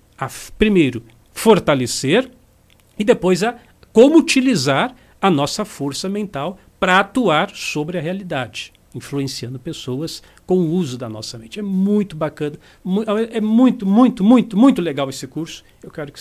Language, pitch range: Portuguese, 140-205 Hz